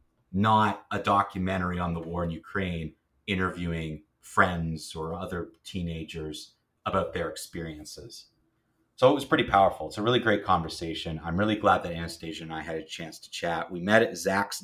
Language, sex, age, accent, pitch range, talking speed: English, male, 30-49, American, 85-105 Hz, 170 wpm